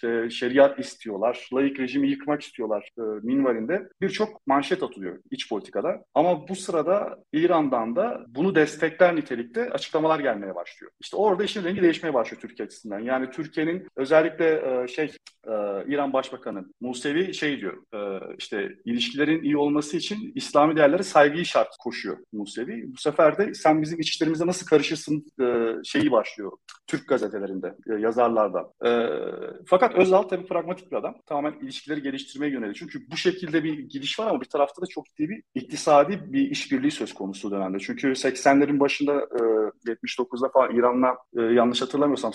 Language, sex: Turkish, male